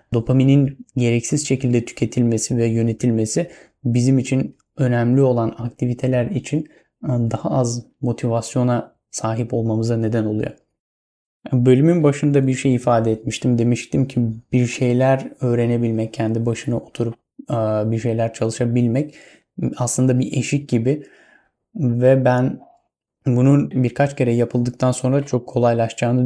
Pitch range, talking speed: 120-135 Hz, 110 wpm